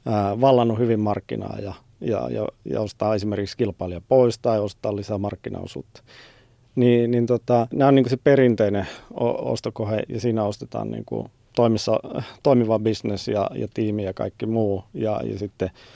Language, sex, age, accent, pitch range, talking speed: Finnish, male, 30-49, native, 105-130 Hz, 155 wpm